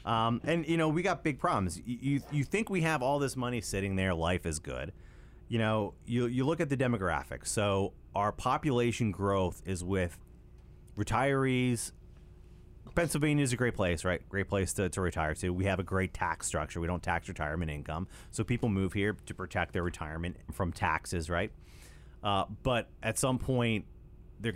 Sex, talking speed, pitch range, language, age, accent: male, 190 wpm, 85-115 Hz, English, 30-49, American